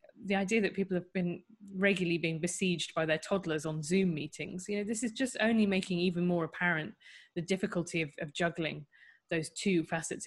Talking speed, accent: 195 wpm, British